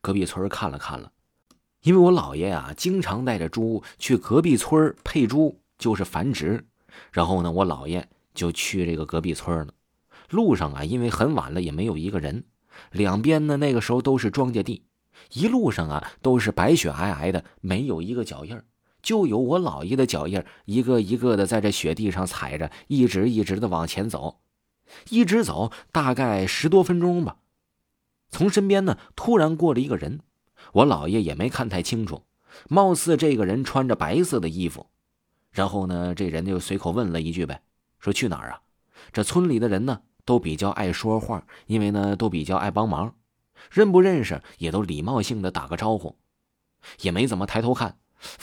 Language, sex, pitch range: Chinese, male, 90-130 Hz